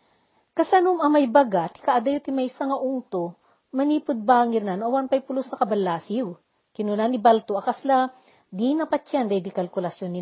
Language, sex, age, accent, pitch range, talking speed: Filipino, female, 40-59, native, 190-265 Hz, 145 wpm